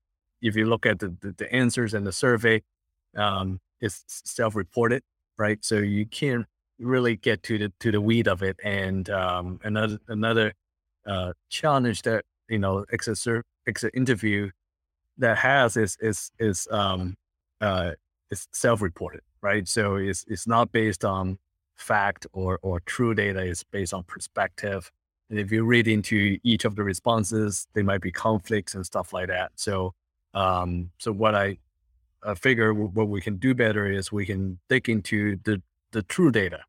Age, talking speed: 30-49, 165 wpm